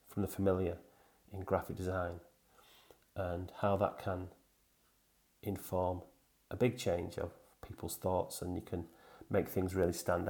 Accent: British